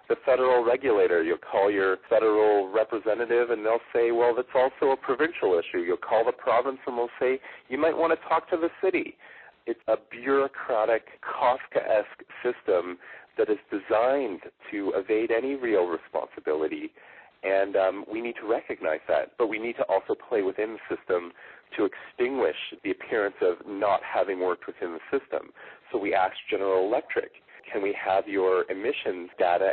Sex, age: male, 40-59